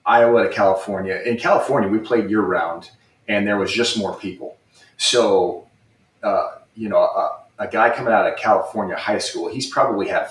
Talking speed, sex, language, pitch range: 175 wpm, male, English, 95-120 Hz